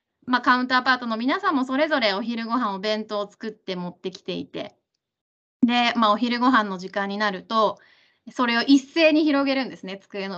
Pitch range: 205-270 Hz